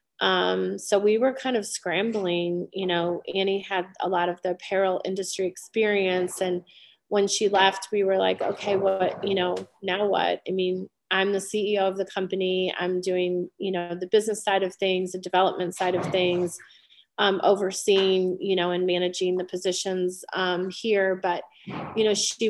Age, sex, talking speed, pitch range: 30-49, female, 180 wpm, 180-195 Hz